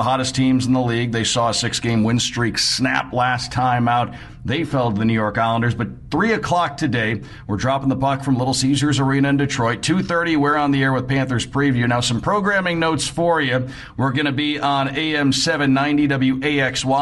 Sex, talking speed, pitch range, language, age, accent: male, 205 wpm, 120-140 Hz, English, 50-69, American